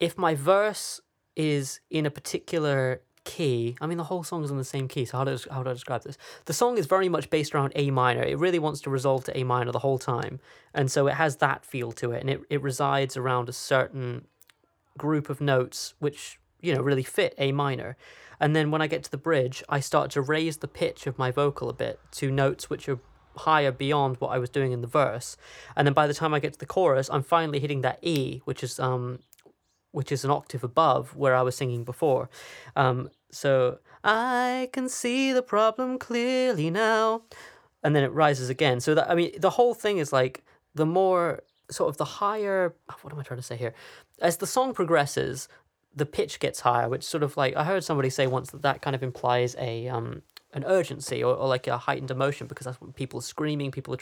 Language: English